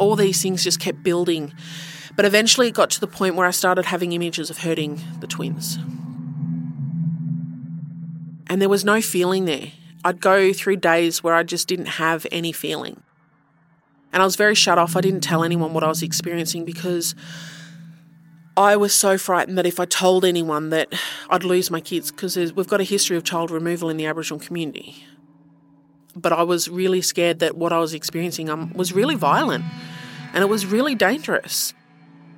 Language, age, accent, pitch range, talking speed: English, 30-49, Australian, 160-185 Hz, 180 wpm